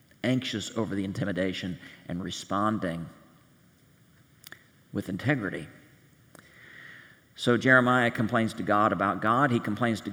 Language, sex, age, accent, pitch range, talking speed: English, male, 40-59, American, 95-120 Hz, 105 wpm